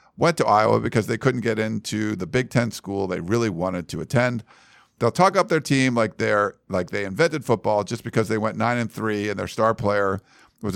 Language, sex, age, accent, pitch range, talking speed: English, male, 50-69, American, 105-130 Hz, 225 wpm